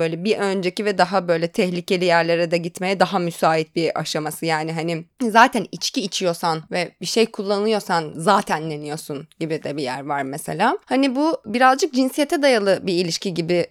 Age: 20-39